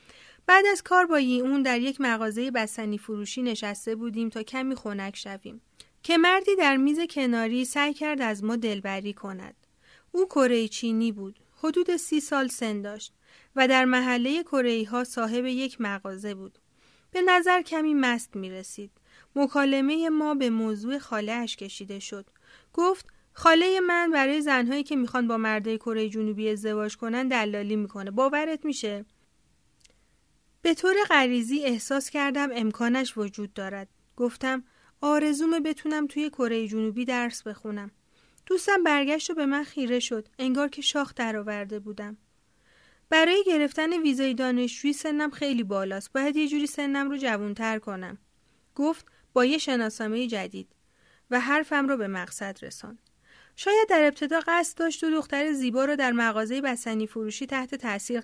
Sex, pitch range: female, 220-295 Hz